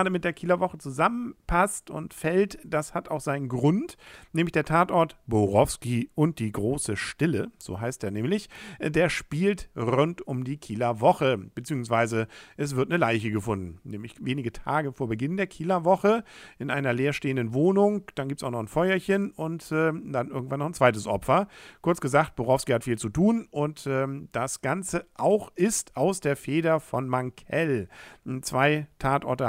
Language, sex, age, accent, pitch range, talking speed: German, male, 50-69, German, 120-170 Hz, 165 wpm